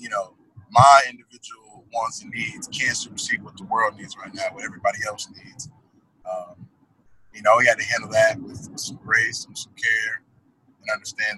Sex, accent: male, American